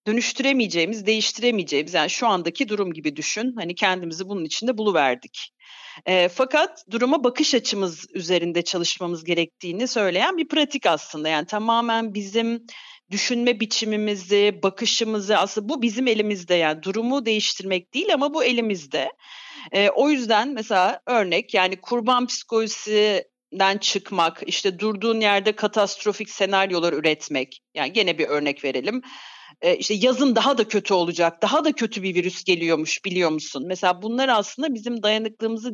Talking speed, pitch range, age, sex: 135 wpm, 185-250 Hz, 40-59, female